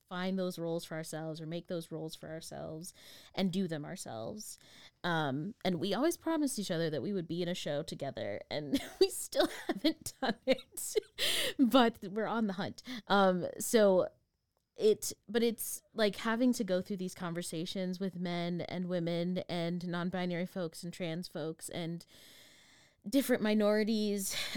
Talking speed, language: 160 wpm, English